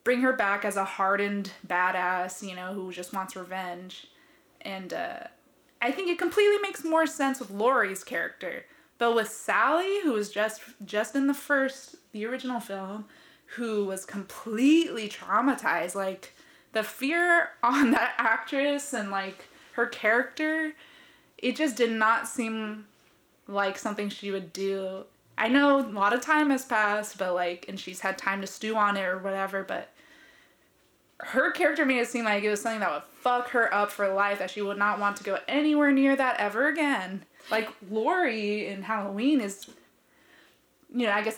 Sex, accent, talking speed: female, American, 175 wpm